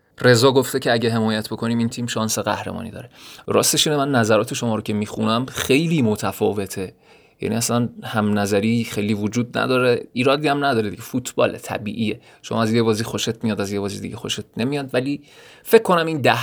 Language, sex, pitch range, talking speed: Persian, male, 105-125 Hz, 185 wpm